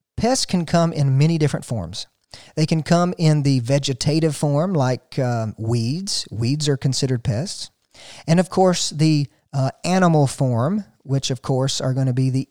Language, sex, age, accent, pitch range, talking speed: English, male, 50-69, American, 130-165 Hz, 175 wpm